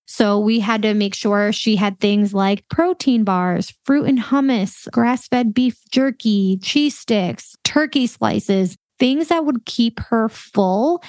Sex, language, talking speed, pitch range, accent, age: female, English, 150 wpm, 195-240 Hz, American, 20-39